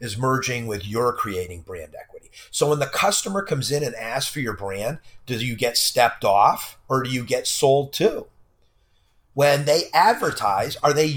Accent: American